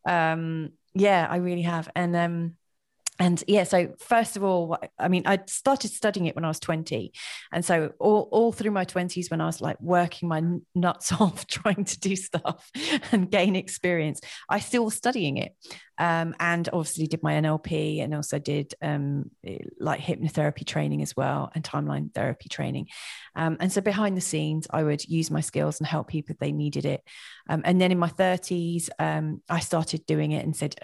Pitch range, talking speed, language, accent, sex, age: 155-185 Hz, 195 wpm, English, British, female, 30-49